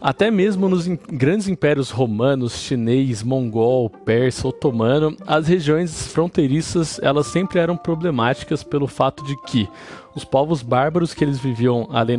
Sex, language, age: male, Portuguese, 20-39